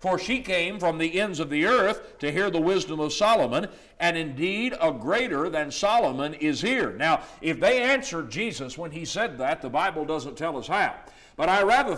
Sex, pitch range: male, 165-235 Hz